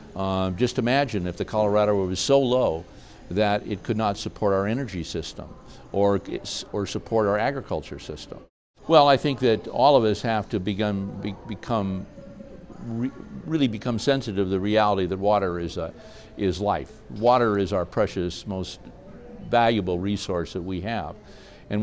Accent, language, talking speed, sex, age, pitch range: American, English, 160 wpm, male, 60-79, 95-115 Hz